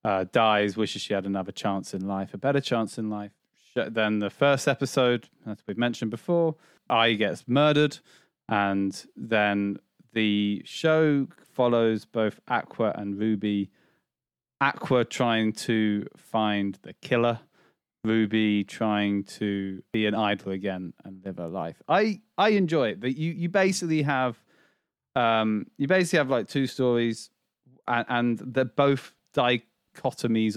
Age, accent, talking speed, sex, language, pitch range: 30-49, British, 145 wpm, male, English, 105-130 Hz